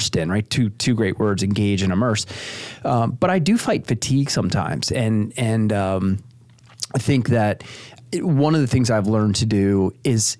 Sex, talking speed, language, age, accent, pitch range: male, 185 wpm, English, 30-49, American, 105-125 Hz